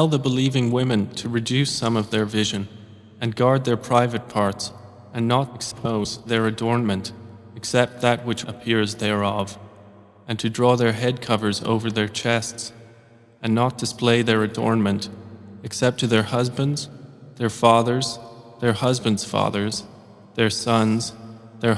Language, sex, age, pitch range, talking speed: English, male, 20-39, 105-120 Hz, 140 wpm